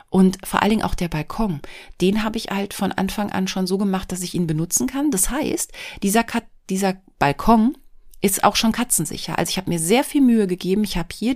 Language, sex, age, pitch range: German, female, 30-49, 170-210 Hz